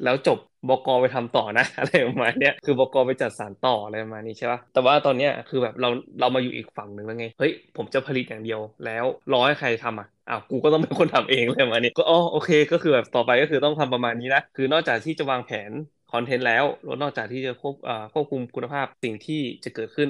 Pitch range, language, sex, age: 115-140 Hz, Thai, male, 20-39